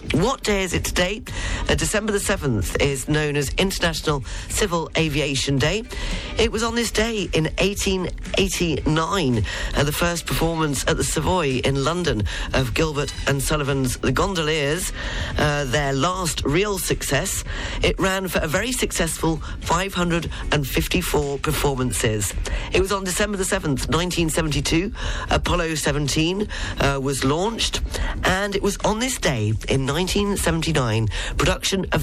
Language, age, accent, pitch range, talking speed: English, 40-59, British, 130-185 Hz, 140 wpm